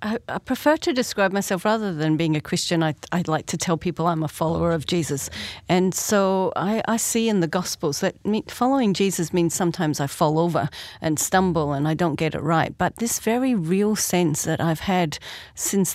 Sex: female